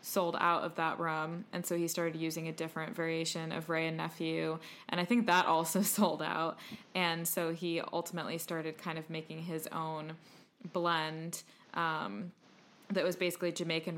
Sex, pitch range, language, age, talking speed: female, 160-175 Hz, English, 20-39, 170 wpm